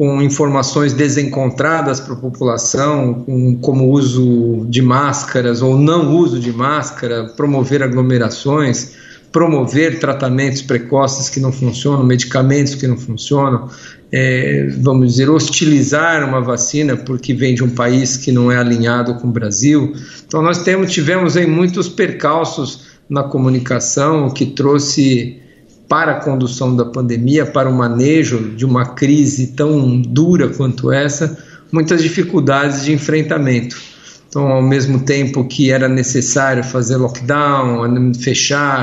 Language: Portuguese